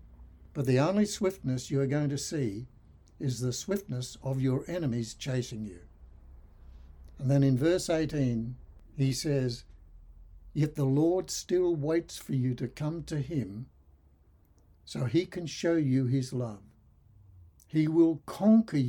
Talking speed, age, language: 145 wpm, 60-79, English